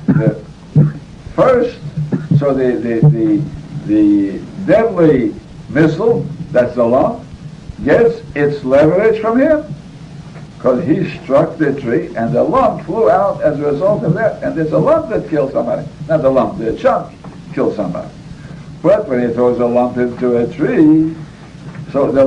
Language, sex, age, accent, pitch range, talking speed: English, male, 60-79, American, 130-160 Hz, 150 wpm